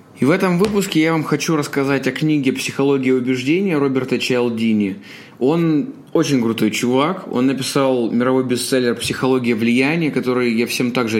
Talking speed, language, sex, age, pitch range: 155 wpm, Russian, male, 20-39, 120-145 Hz